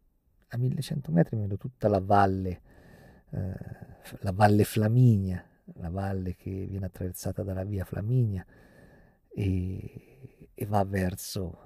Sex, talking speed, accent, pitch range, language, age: male, 120 wpm, native, 90-110 Hz, Italian, 40-59